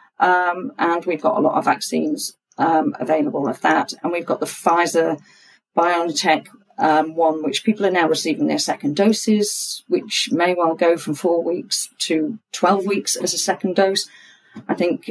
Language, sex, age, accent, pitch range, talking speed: English, female, 40-59, British, 165-215 Hz, 170 wpm